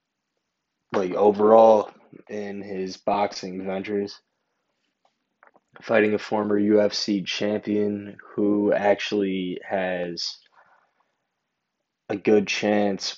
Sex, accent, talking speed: male, American, 75 wpm